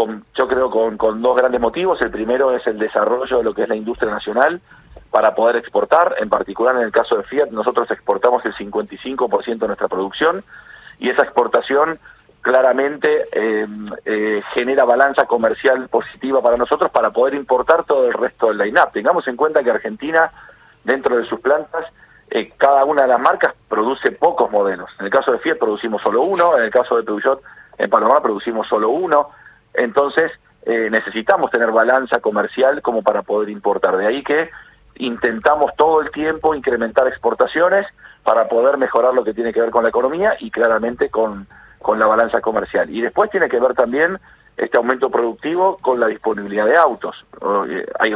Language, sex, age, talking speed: Spanish, male, 40-59, 180 wpm